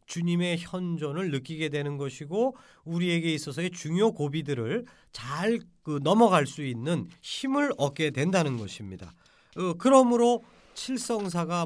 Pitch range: 155-235 Hz